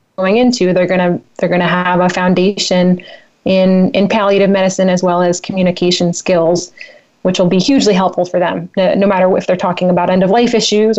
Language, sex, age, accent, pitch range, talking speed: English, female, 30-49, American, 180-200 Hz, 190 wpm